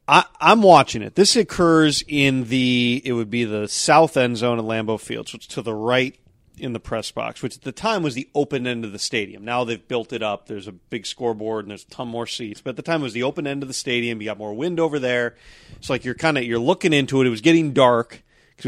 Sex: male